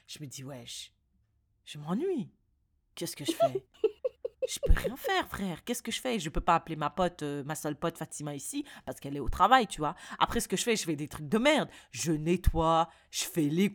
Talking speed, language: 255 wpm, French